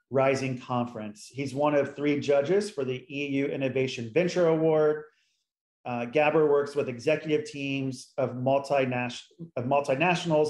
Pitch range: 125-145 Hz